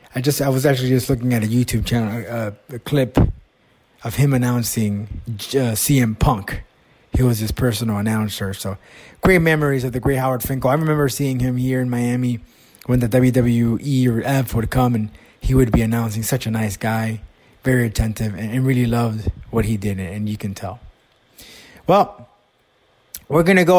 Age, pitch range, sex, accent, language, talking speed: 20-39, 120-155 Hz, male, American, English, 185 wpm